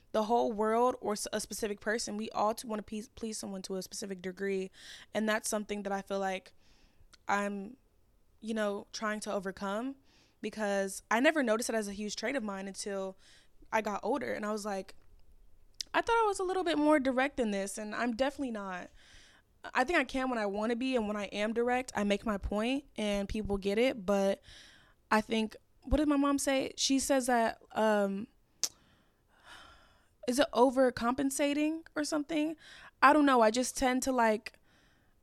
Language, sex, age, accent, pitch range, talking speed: English, female, 10-29, American, 200-245 Hz, 190 wpm